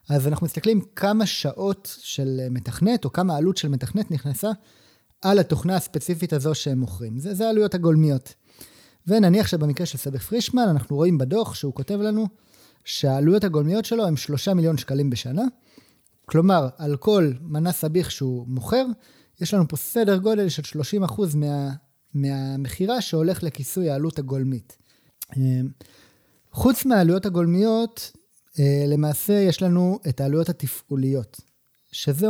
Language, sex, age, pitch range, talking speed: Hebrew, male, 30-49, 135-190 Hz, 135 wpm